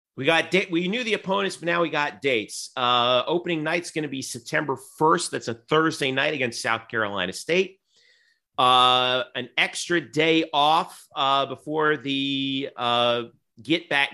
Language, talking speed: English, 155 wpm